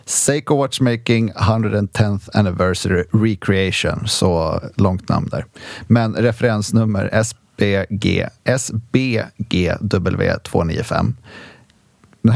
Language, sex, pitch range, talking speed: English, male, 95-115 Hz, 70 wpm